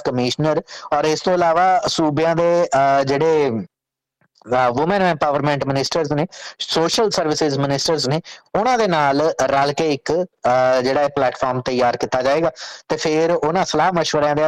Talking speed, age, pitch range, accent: 115 wpm, 30-49, 135-160 Hz, Indian